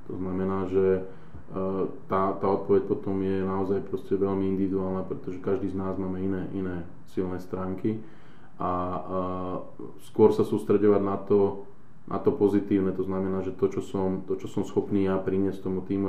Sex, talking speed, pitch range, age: male, 160 wpm, 95-100 Hz, 20-39